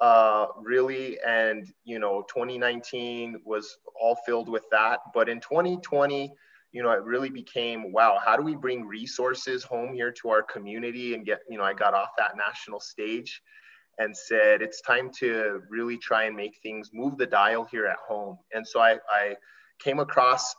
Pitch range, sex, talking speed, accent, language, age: 115-140 Hz, male, 180 wpm, American, English, 20-39